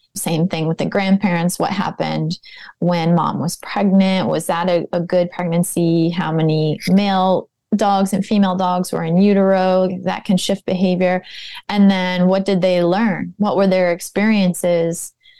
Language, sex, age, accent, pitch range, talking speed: English, female, 20-39, American, 175-200 Hz, 160 wpm